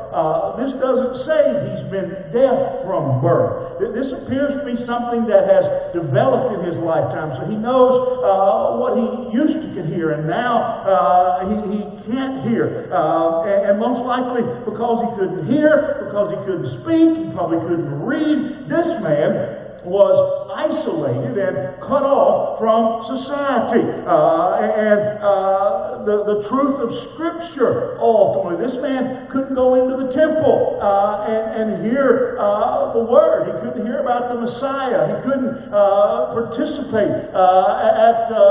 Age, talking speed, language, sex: 50-69, 150 wpm, English, male